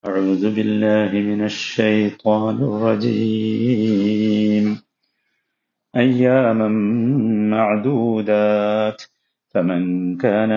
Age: 50-69